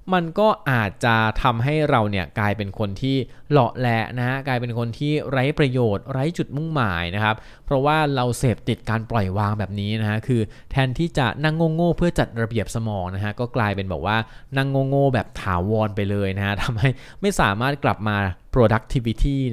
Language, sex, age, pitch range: Thai, male, 20-39, 105-135 Hz